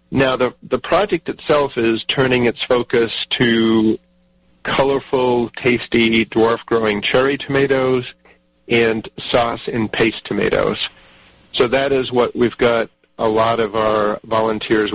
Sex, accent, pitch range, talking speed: male, American, 105-120 Hz, 125 wpm